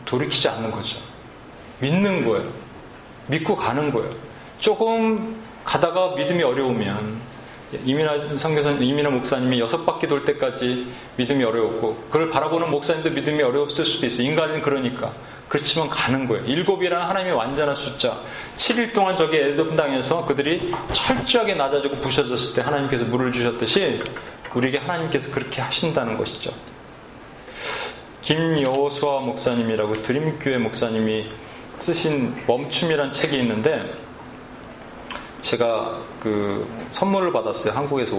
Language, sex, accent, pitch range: Korean, male, native, 120-160 Hz